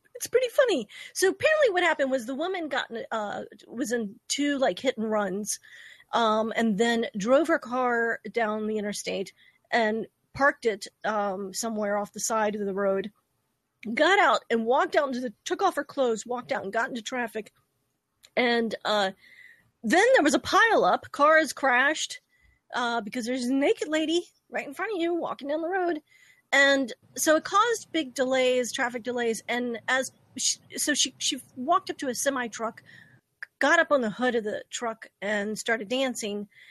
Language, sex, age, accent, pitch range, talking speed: English, female, 30-49, American, 230-300 Hz, 180 wpm